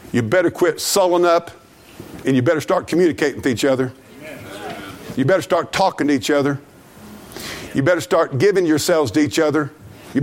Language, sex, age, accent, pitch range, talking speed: English, male, 50-69, American, 150-215 Hz, 170 wpm